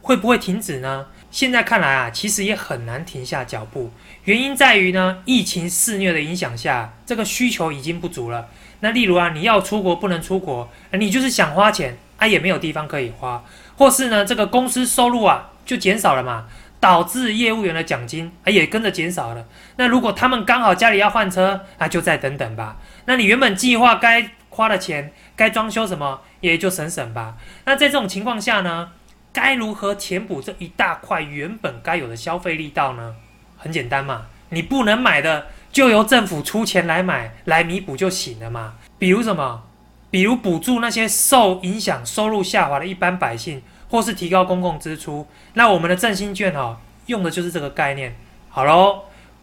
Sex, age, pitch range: male, 20-39, 150-220 Hz